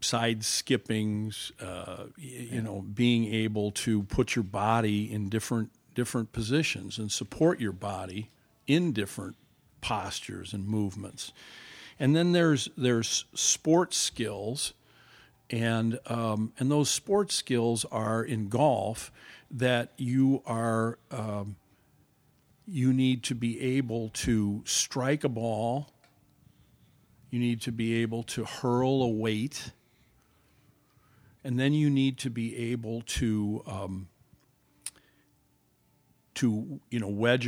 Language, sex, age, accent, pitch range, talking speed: English, male, 50-69, American, 110-130 Hz, 120 wpm